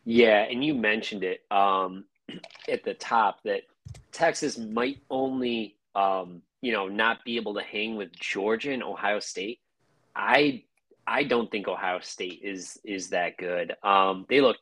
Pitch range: 100-130 Hz